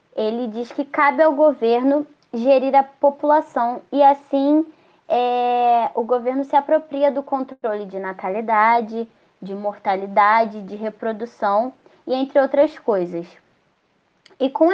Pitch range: 220-285 Hz